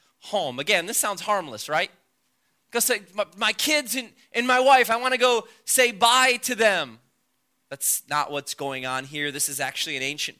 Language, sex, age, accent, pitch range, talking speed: English, male, 20-39, American, 175-230 Hz, 190 wpm